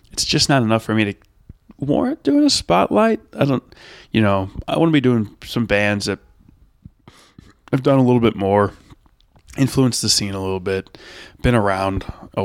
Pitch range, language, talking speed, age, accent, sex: 100-135 Hz, English, 185 wpm, 20-39, American, male